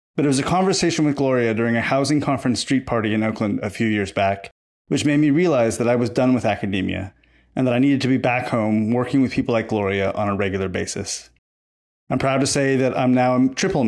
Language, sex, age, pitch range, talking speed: English, male, 30-49, 110-140 Hz, 240 wpm